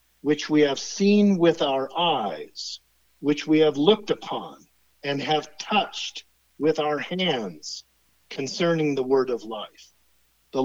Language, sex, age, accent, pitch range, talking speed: English, male, 50-69, American, 130-175 Hz, 135 wpm